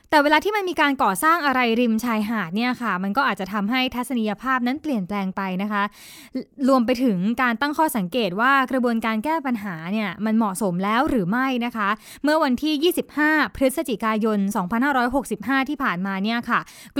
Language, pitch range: Thai, 210-275 Hz